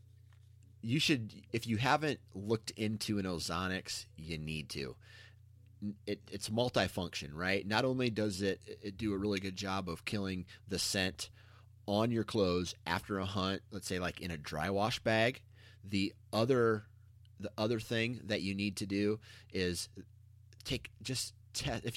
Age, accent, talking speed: 30-49, American, 160 wpm